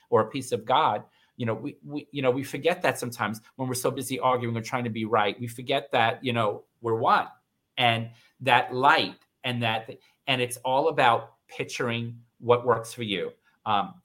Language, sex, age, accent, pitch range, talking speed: English, male, 40-59, American, 115-145 Hz, 200 wpm